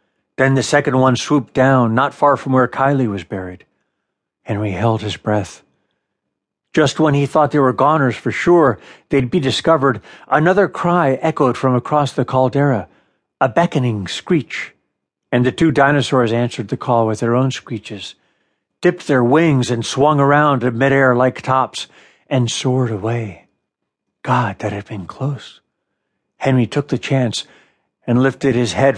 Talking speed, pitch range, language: 155 wpm, 115-140 Hz, English